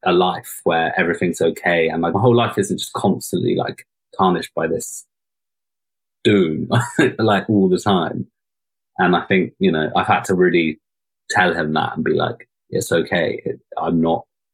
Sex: male